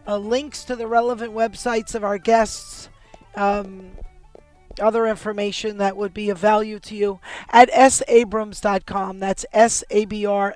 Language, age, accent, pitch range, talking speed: English, 40-59, American, 200-235 Hz, 150 wpm